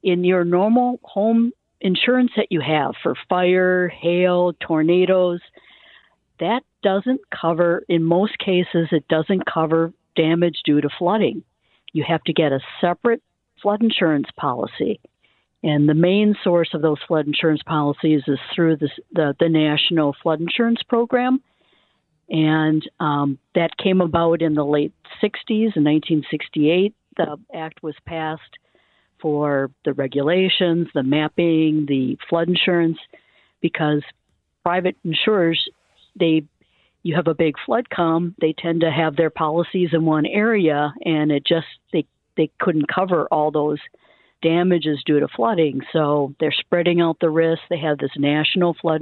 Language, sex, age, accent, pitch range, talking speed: English, female, 60-79, American, 155-180 Hz, 145 wpm